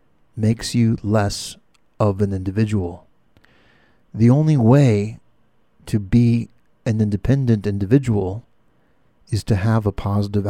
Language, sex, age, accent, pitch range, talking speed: English, male, 50-69, American, 105-125 Hz, 110 wpm